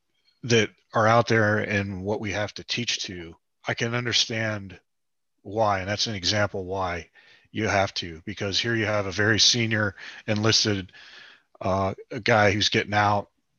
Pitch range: 100-120 Hz